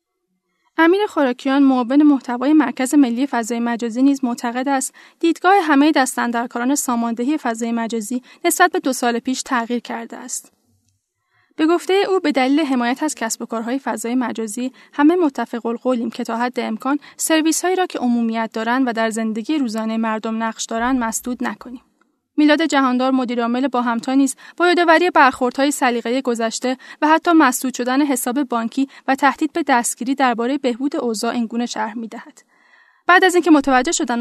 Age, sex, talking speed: 10-29, female, 160 wpm